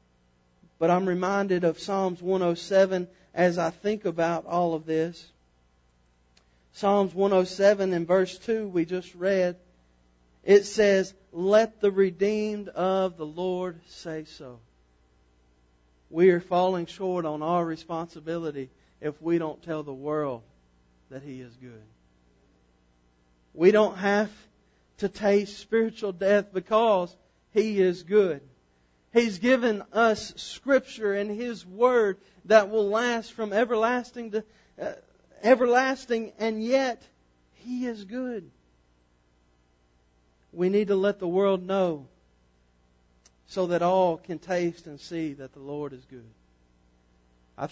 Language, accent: English, American